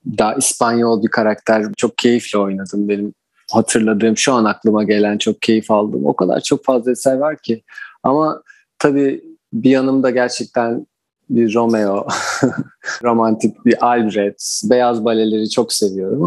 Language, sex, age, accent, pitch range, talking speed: Turkish, male, 40-59, native, 110-125 Hz, 135 wpm